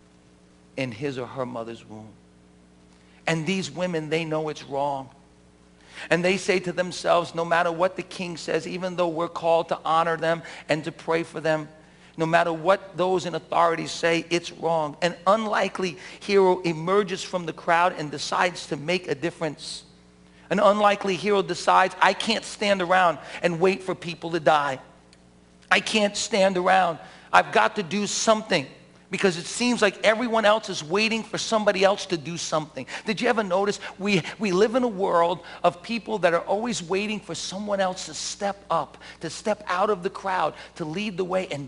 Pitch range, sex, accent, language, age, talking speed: 145-190 Hz, male, American, English, 50-69, 185 wpm